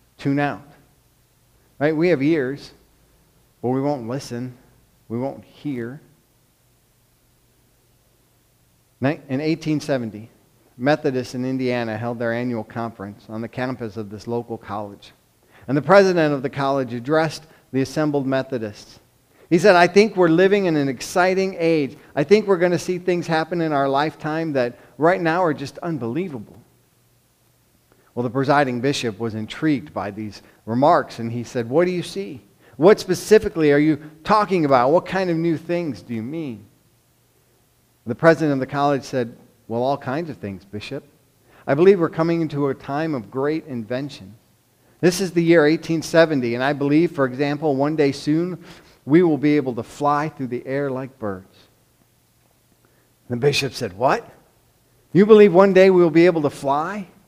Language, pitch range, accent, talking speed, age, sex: English, 120-160 Hz, American, 165 wpm, 50-69, male